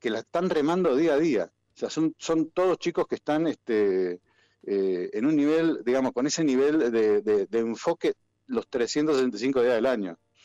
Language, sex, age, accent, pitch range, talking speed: Spanish, male, 50-69, Argentinian, 115-150 Hz, 190 wpm